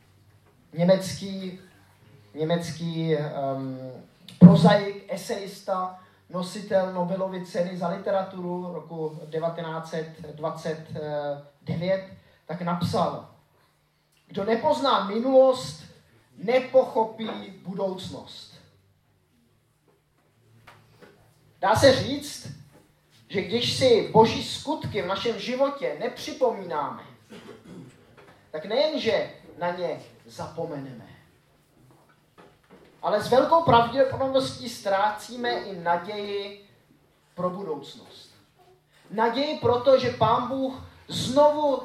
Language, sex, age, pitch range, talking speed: Czech, male, 20-39, 160-230 Hz, 70 wpm